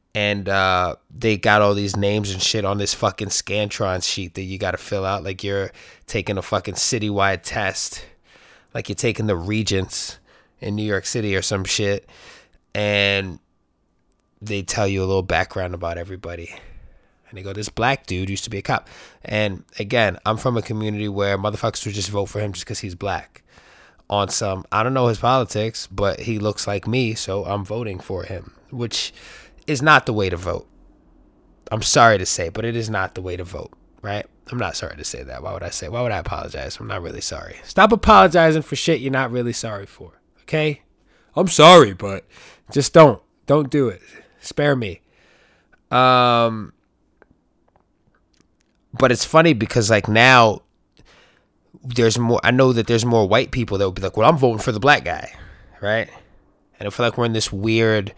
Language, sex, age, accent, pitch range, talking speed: English, male, 20-39, American, 95-120 Hz, 195 wpm